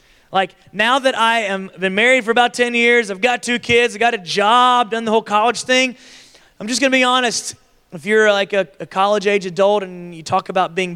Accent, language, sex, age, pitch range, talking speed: American, English, male, 30-49, 200-255 Hz, 230 wpm